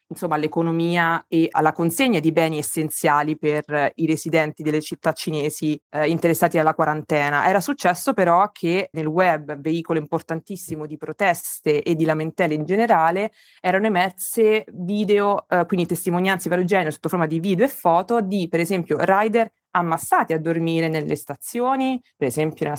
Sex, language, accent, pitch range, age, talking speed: female, Italian, native, 155-190 Hz, 20-39, 160 wpm